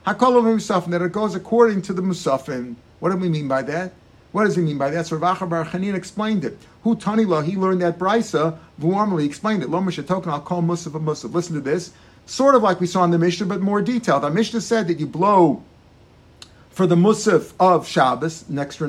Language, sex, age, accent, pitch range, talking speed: English, male, 50-69, American, 160-200 Hz, 215 wpm